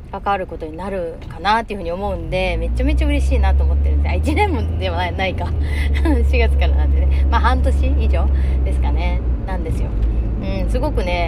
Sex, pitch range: female, 65-90 Hz